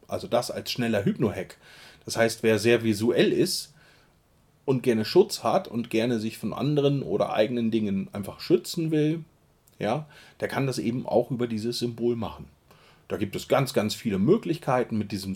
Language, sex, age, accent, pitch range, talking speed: German, male, 30-49, German, 110-145 Hz, 175 wpm